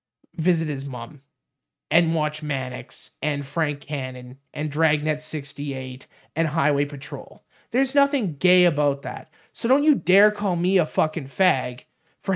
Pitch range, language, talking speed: 165-220 Hz, English, 145 wpm